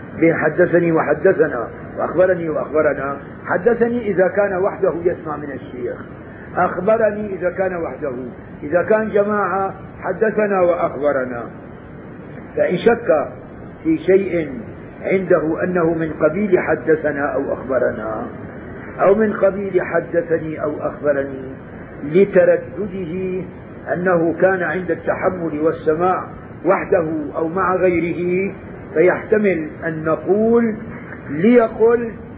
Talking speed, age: 95 wpm, 50-69